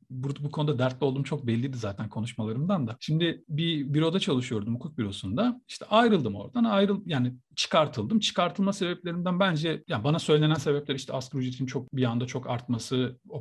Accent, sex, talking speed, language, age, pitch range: native, male, 170 wpm, Turkish, 40-59, 125-205 Hz